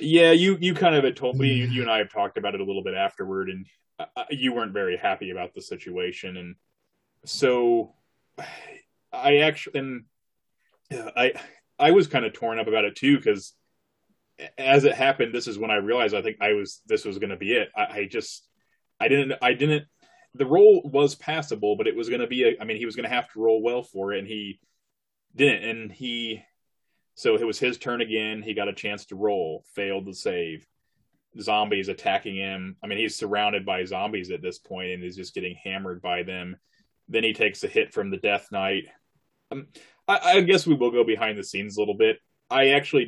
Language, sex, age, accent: English, male, 20-39, American